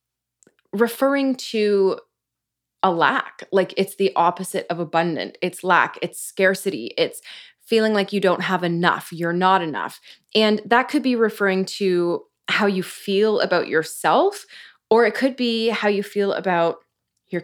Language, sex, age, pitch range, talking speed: English, female, 20-39, 175-230 Hz, 150 wpm